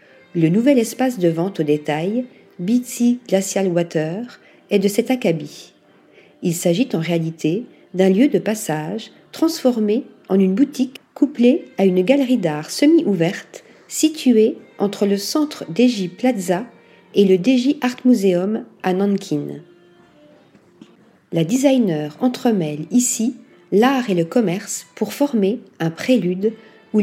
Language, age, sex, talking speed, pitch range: French, 50-69, female, 130 wpm, 185-245 Hz